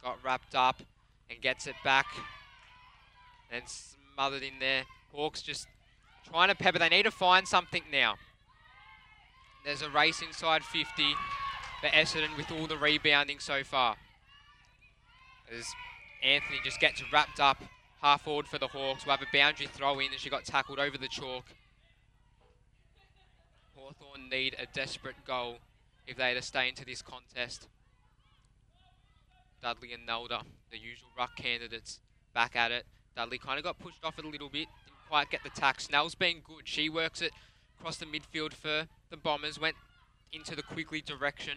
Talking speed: 165 wpm